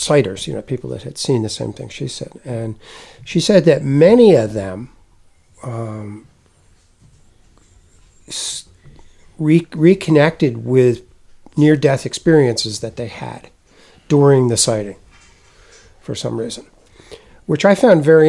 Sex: male